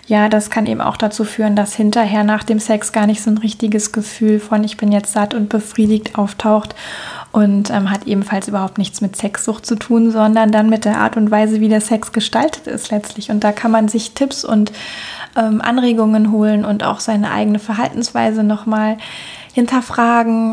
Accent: German